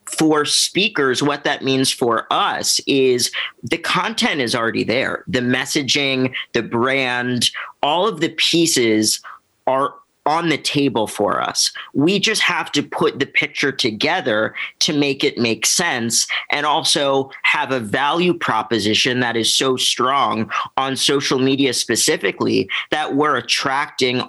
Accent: American